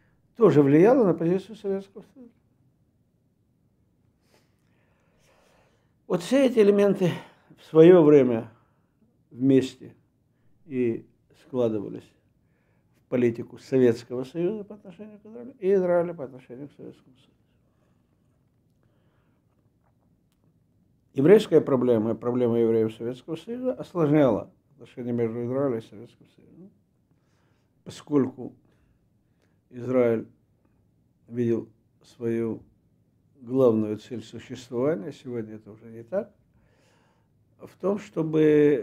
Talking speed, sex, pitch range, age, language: 90 wpm, male, 120-160 Hz, 60-79, Russian